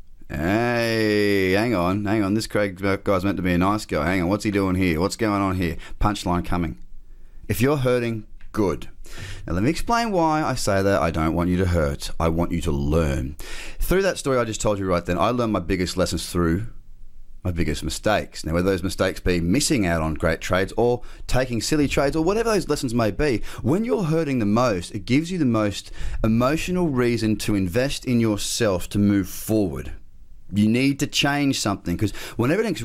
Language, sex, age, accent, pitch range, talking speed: English, male, 30-49, Australian, 85-115 Hz, 210 wpm